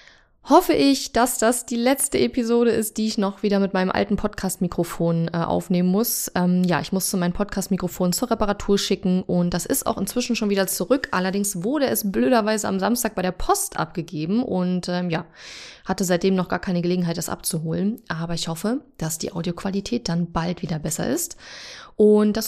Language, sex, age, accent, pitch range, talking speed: German, female, 20-39, German, 175-215 Hz, 185 wpm